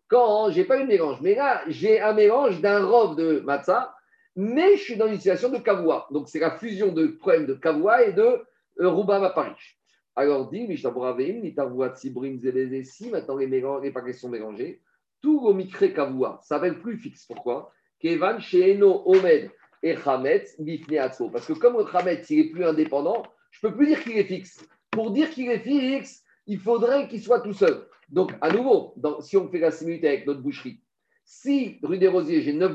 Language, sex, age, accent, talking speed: French, male, 50-69, French, 210 wpm